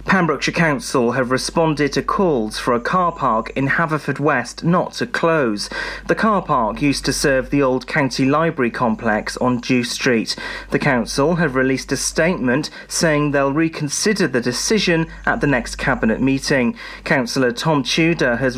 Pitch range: 130-165 Hz